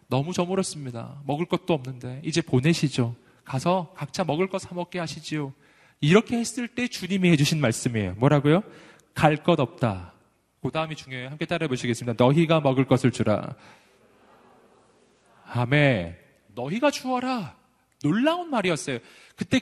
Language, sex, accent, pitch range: Korean, male, native, 130-195 Hz